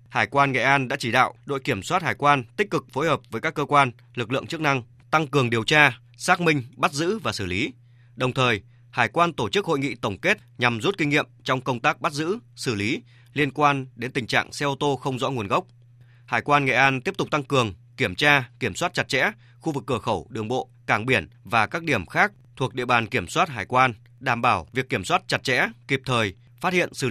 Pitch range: 120-145 Hz